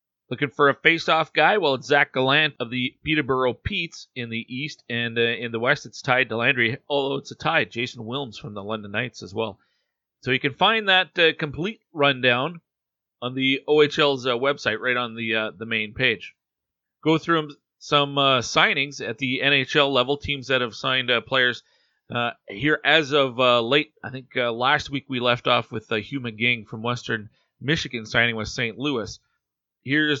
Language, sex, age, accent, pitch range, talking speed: English, male, 40-59, American, 120-145 Hz, 195 wpm